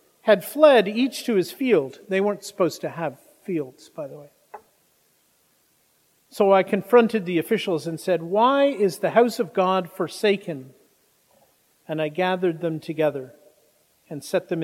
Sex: male